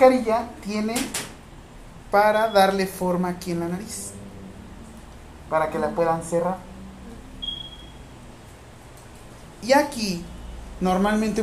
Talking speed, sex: 90 wpm, male